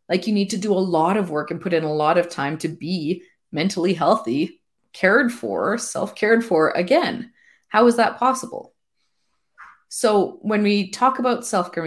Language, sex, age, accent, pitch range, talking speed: English, female, 30-49, Canadian, 160-210 Hz, 175 wpm